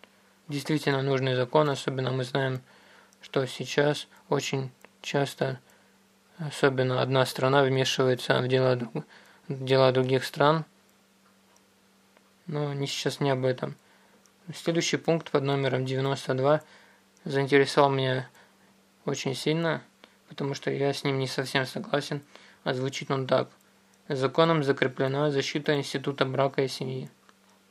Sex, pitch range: male, 130-150 Hz